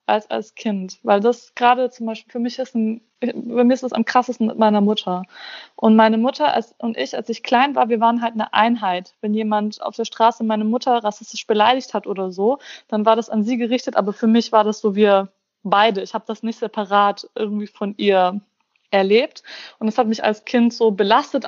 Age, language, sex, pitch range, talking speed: 20-39, German, female, 210-265 Hz, 220 wpm